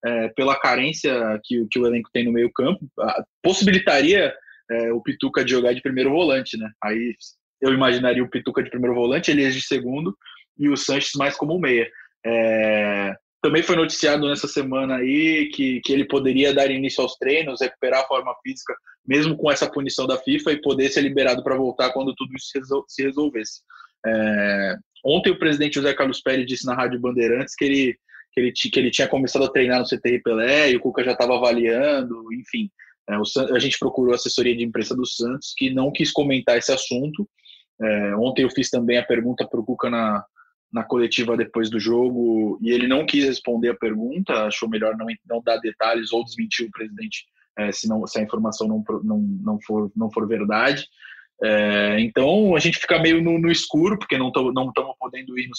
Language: Portuguese